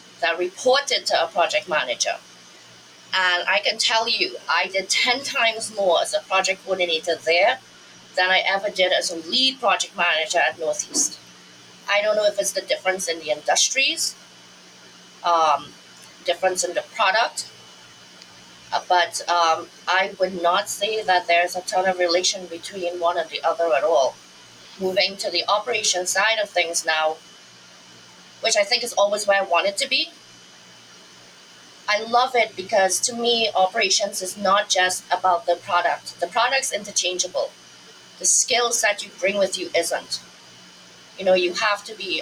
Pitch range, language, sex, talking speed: 170-210 Hz, English, female, 165 wpm